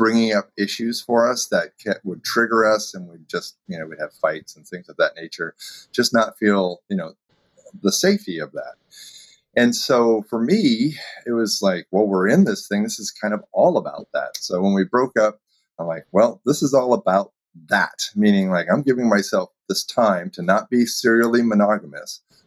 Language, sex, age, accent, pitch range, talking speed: English, male, 30-49, American, 100-120 Hz, 200 wpm